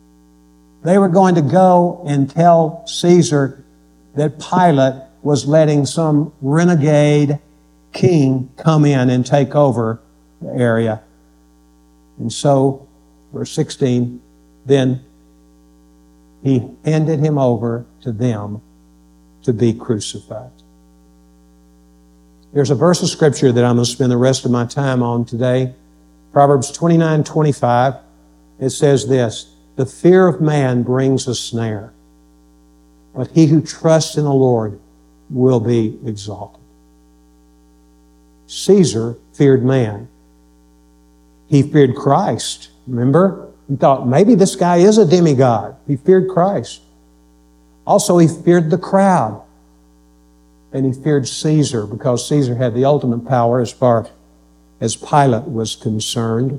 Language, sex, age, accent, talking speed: English, male, 60-79, American, 120 wpm